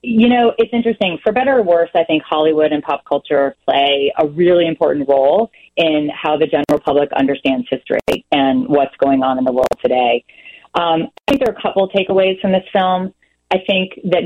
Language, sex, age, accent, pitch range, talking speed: English, female, 30-49, American, 150-185 Hz, 205 wpm